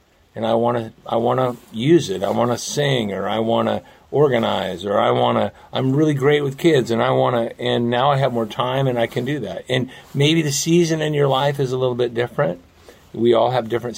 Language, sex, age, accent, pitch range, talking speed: English, male, 50-69, American, 110-140 Hz, 250 wpm